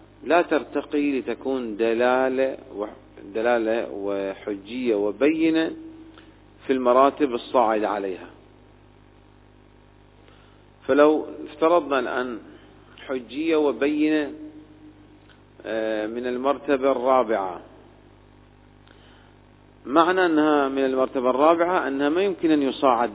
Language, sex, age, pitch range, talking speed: Arabic, male, 40-59, 115-150 Hz, 75 wpm